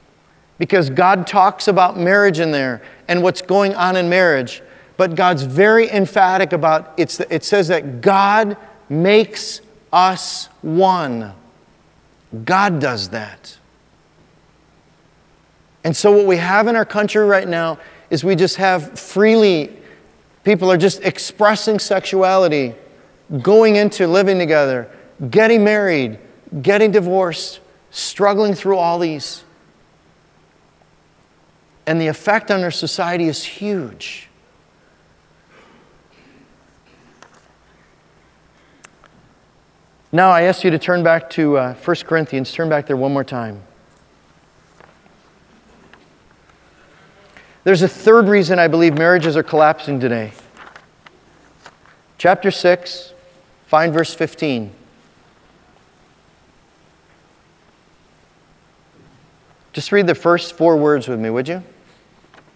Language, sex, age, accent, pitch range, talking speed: English, male, 40-59, American, 155-195 Hz, 105 wpm